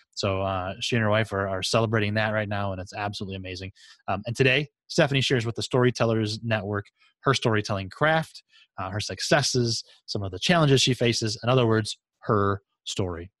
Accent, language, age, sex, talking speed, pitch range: American, English, 20-39, male, 190 wpm, 100-130 Hz